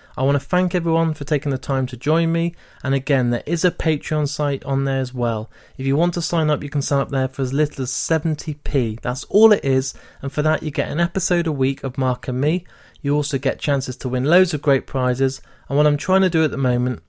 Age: 30-49